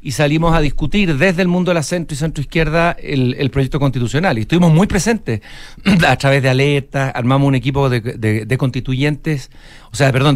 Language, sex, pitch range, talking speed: Spanish, male, 130-170 Hz, 195 wpm